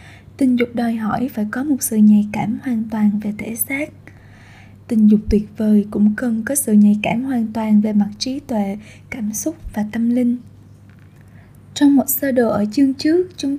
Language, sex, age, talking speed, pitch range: Vietnamese, female, 10-29, 195 wpm, 215-265 Hz